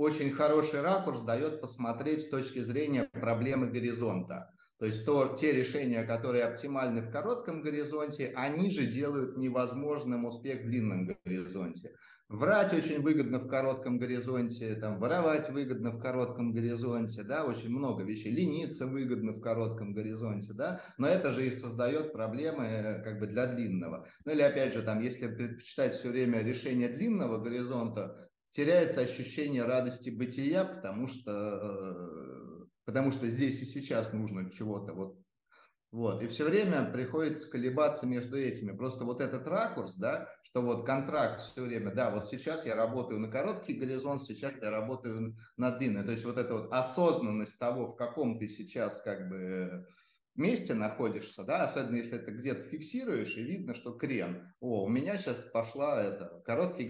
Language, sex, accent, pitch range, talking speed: Russian, male, native, 115-140 Hz, 160 wpm